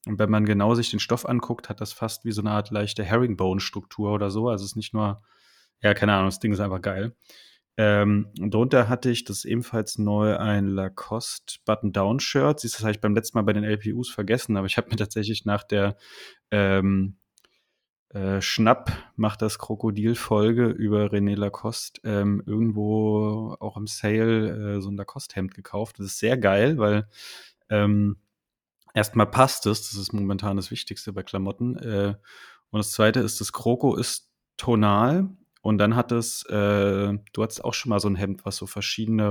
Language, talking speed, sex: German, 180 wpm, male